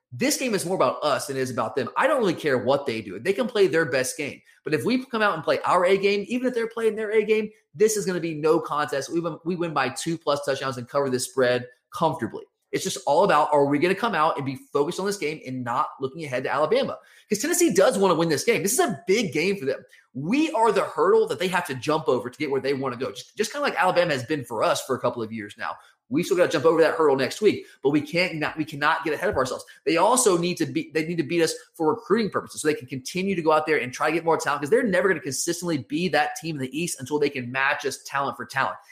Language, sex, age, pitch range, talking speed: English, male, 30-49, 140-200 Hz, 300 wpm